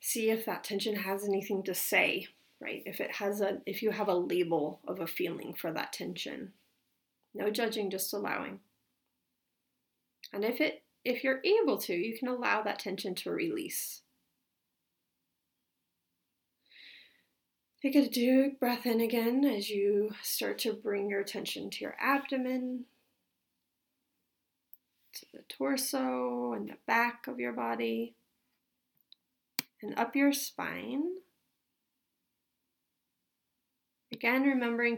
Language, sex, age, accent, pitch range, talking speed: English, female, 30-49, American, 200-260 Hz, 125 wpm